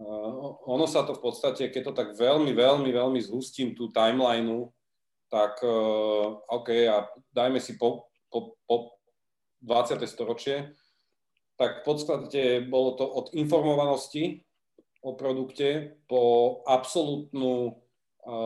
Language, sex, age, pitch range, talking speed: Slovak, male, 30-49, 115-135 Hz, 110 wpm